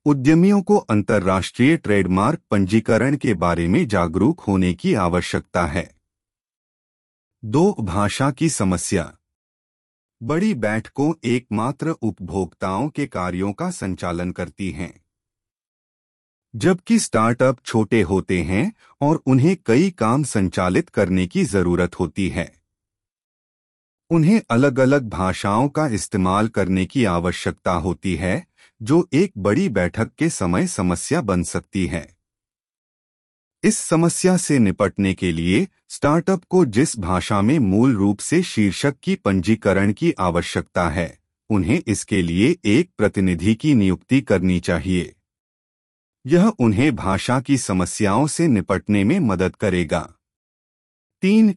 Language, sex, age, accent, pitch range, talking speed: Hindi, male, 30-49, native, 90-140 Hz, 120 wpm